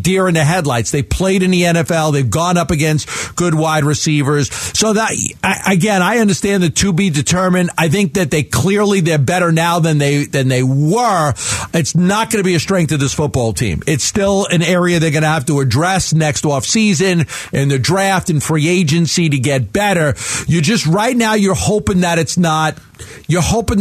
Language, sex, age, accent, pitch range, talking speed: English, male, 50-69, American, 145-185 Hz, 205 wpm